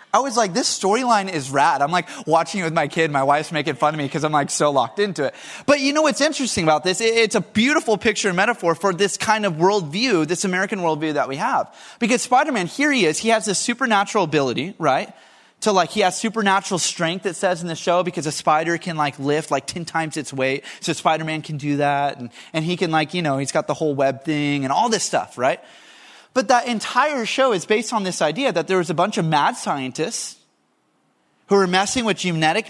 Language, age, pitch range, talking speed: English, 20-39, 155-220 Hz, 235 wpm